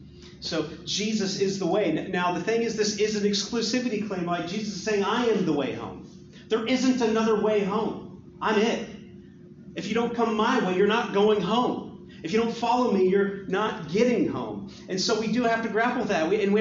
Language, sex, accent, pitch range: English, male, American, 185-230 Hz